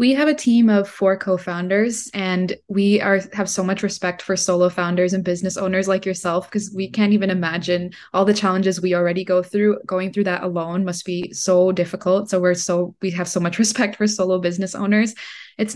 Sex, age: female, 20-39